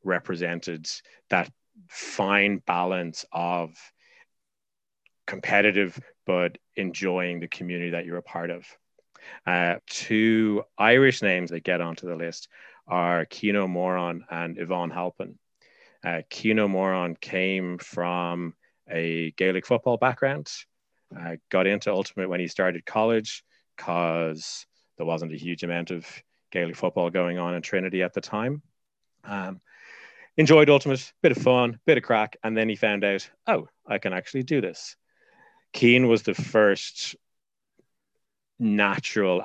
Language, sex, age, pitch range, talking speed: English, male, 30-49, 85-105 Hz, 135 wpm